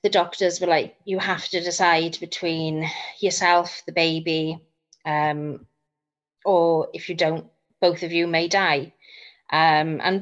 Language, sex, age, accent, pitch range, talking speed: English, female, 30-49, British, 165-185 Hz, 140 wpm